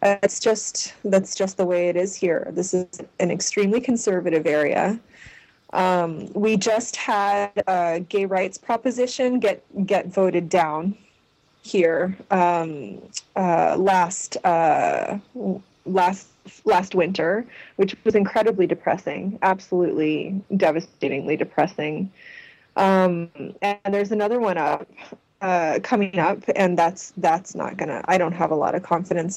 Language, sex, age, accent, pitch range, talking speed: English, female, 20-39, American, 170-210 Hz, 125 wpm